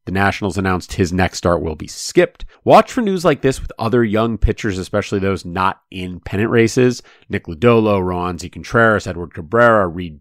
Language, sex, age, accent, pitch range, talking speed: English, male, 30-49, American, 90-115 Hz, 175 wpm